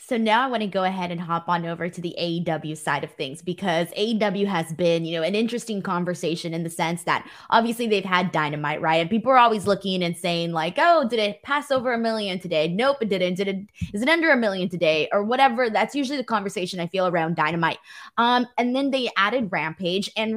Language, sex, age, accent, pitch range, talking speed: English, female, 20-39, American, 180-240 Hz, 235 wpm